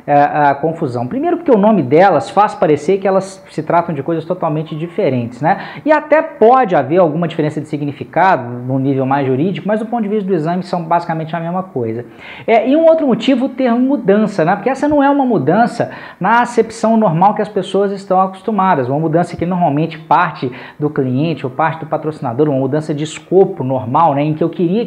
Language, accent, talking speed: Portuguese, Brazilian, 210 wpm